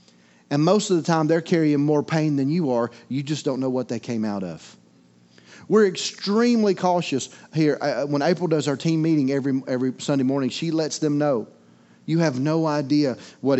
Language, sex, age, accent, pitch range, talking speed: English, male, 30-49, American, 135-175 Hz, 195 wpm